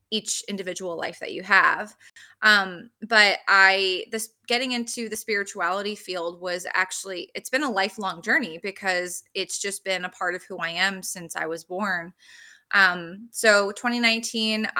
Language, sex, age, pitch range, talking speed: English, female, 20-39, 185-225 Hz, 160 wpm